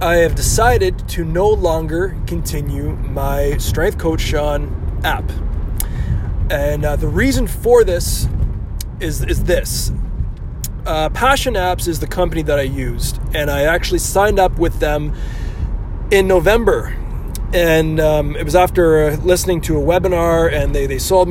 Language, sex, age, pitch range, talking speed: English, male, 20-39, 140-185 Hz, 145 wpm